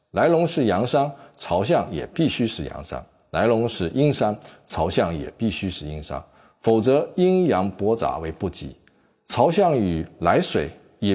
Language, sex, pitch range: Chinese, male, 80-135 Hz